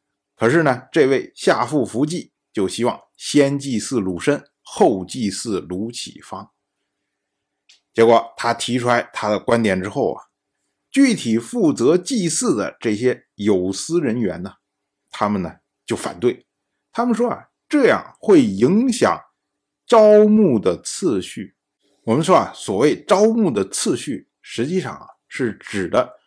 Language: Chinese